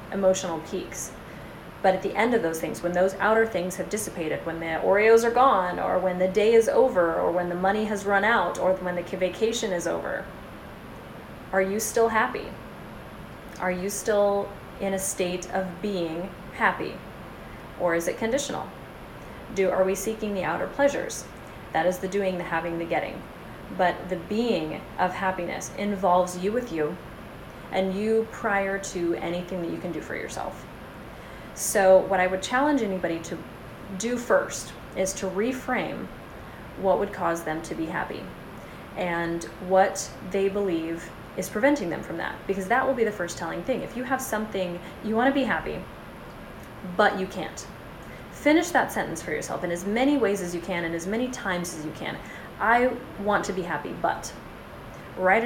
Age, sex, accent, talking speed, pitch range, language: 30-49, female, American, 180 wpm, 180-215 Hz, English